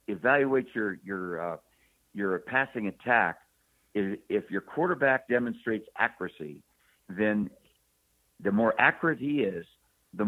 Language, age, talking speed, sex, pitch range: English, 60-79, 115 wpm, male, 95-110 Hz